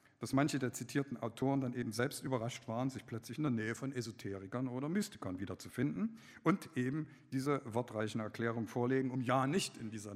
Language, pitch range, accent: German, 115-165 Hz, German